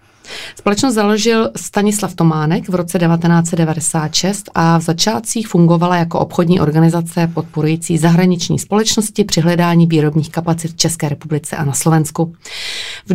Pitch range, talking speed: 165-195 Hz, 130 wpm